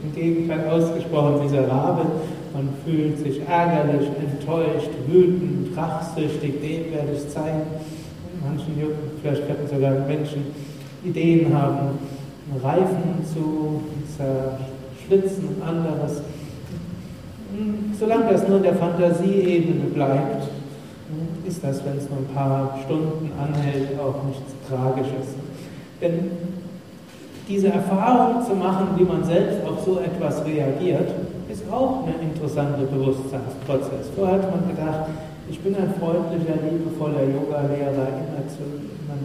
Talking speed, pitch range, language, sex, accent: 115 wpm, 140-175 Hz, German, male, German